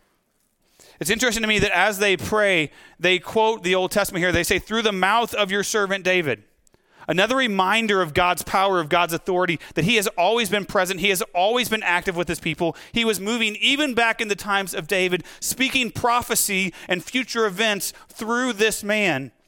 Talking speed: 195 wpm